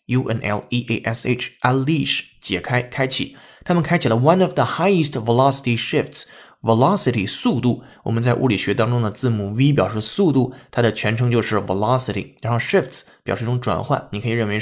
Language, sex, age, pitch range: Chinese, male, 20-39, 110-135 Hz